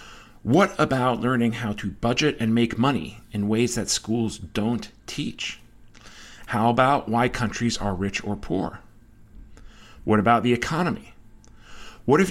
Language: English